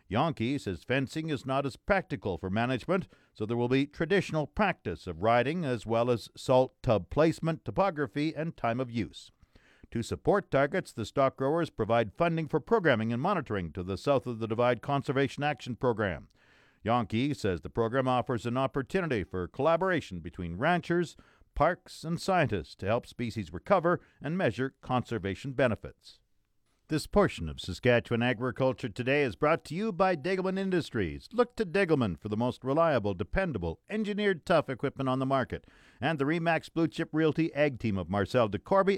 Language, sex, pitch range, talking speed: English, male, 115-160 Hz, 170 wpm